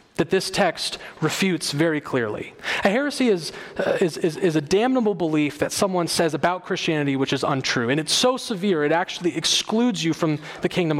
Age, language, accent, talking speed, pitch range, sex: 30-49, English, American, 190 wpm, 155-210 Hz, male